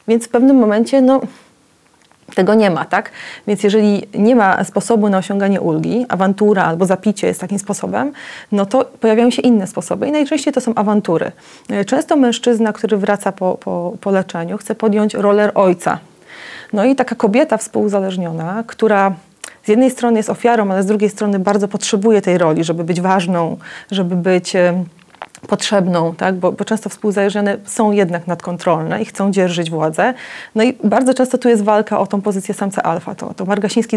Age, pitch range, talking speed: 30-49, 195-230 Hz, 175 wpm